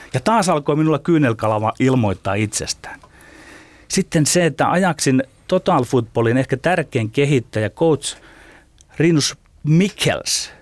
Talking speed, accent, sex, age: 105 wpm, native, male, 30-49